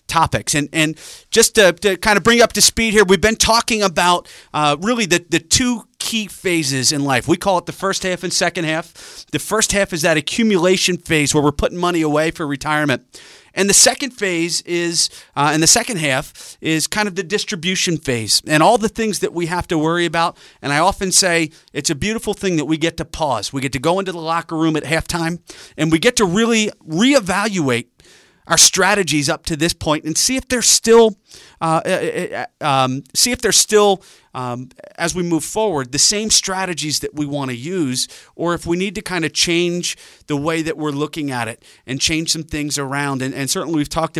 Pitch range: 145-185 Hz